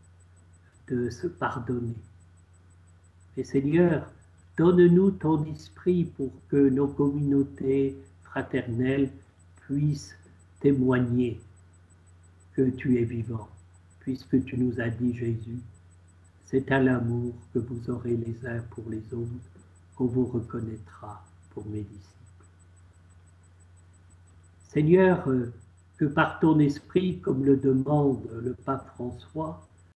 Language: French